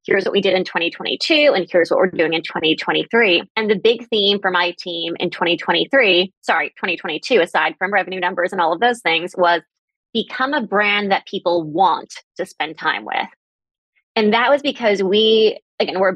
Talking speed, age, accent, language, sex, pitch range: 190 wpm, 20-39, American, English, female, 185-250 Hz